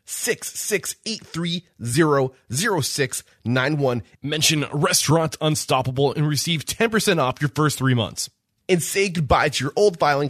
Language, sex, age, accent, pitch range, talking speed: English, male, 20-39, American, 120-165 Hz, 120 wpm